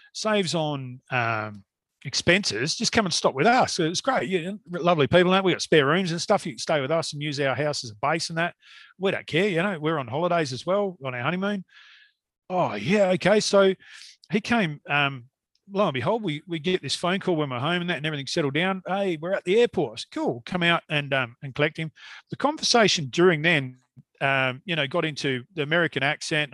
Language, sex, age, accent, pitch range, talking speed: English, male, 40-59, Australian, 145-195 Hz, 230 wpm